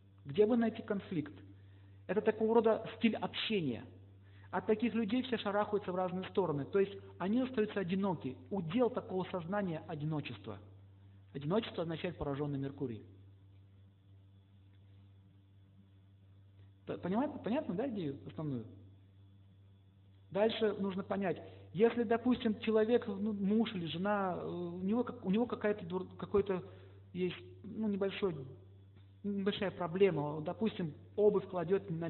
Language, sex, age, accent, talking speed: Russian, male, 50-69, native, 110 wpm